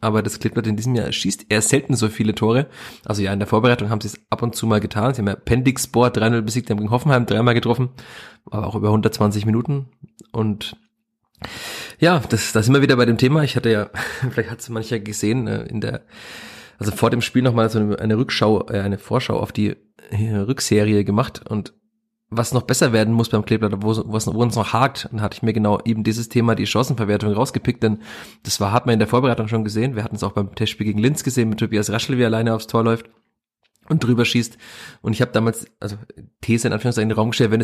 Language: German